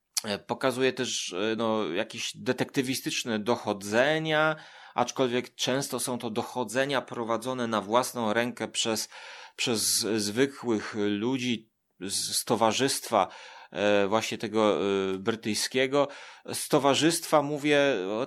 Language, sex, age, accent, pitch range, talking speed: Polish, male, 30-49, native, 115-145 Hz, 90 wpm